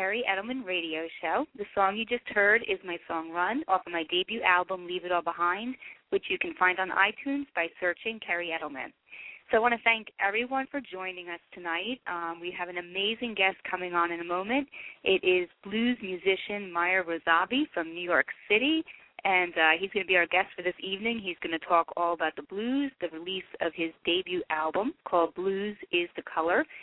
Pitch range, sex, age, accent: 170-220 Hz, female, 30-49, American